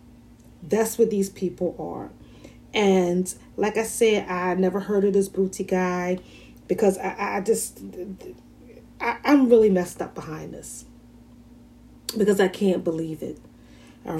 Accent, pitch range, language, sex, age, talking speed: American, 160-190 Hz, English, female, 30-49, 140 wpm